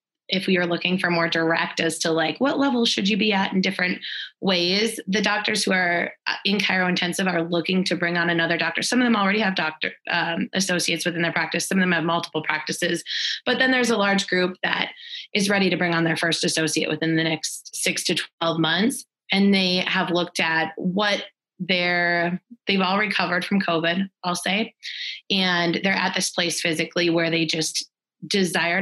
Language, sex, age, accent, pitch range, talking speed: English, female, 20-39, American, 170-195 Hz, 200 wpm